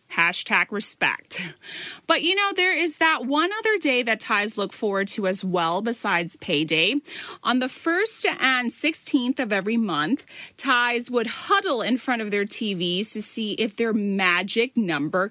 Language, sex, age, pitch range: Thai, female, 30-49, 185-260 Hz